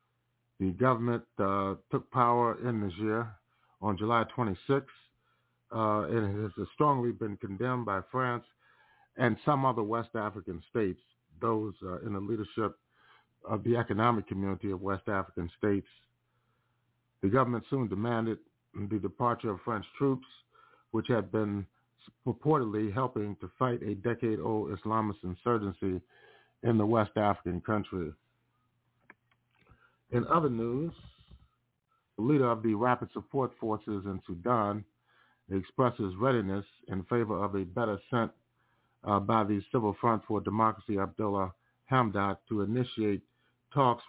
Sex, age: male, 50-69